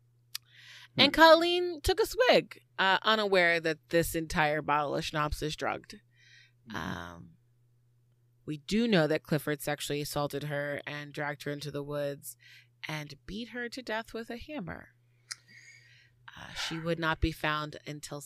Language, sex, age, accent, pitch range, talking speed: English, female, 30-49, American, 120-190 Hz, 150 wpm